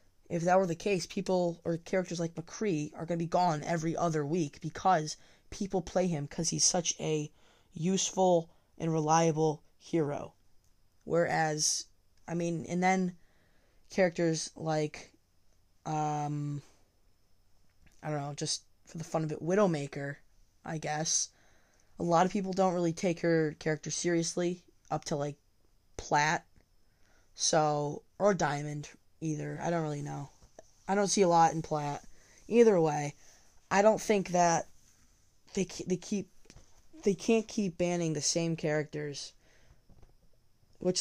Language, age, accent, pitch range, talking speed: English, 20-39, American, 145-175 Hz, 140 wpm